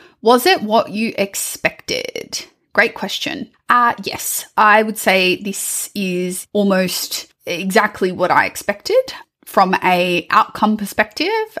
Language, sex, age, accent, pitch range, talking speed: English, female, 20-39, Australian, 190-260 Hz, 120 wpm